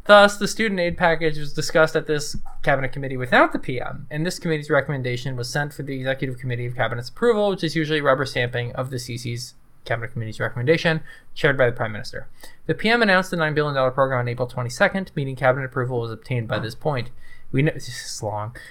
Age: 20-39